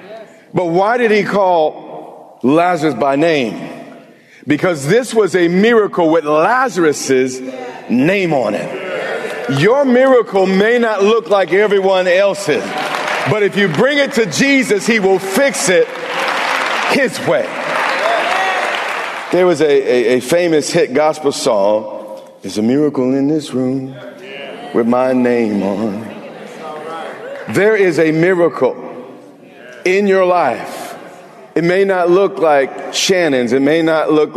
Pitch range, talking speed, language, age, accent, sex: 145-205 Hz, 130 wpm, English, 50-69, American, male